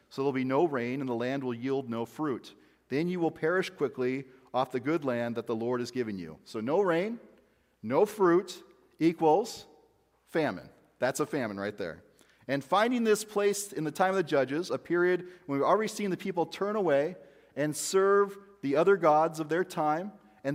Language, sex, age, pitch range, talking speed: English, male, 40-59, 135-190 Hz, 200 wpm